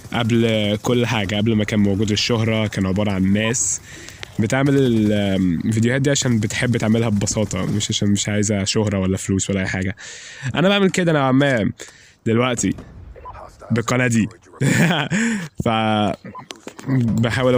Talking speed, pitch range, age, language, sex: 135 wpm, 105-145 Hz, 20-39, Arabic, male